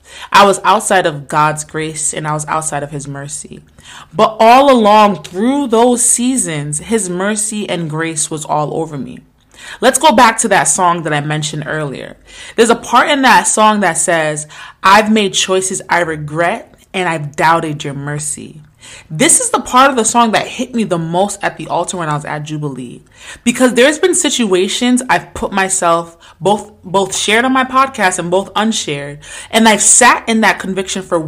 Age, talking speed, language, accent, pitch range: 20-39, 190 wpm, English, American, 155-220 Hz